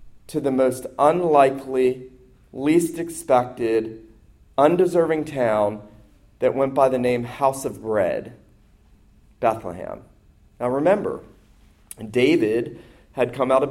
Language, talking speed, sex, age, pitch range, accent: English, 105 wpm, male, 30-49, 130-170 Hz, American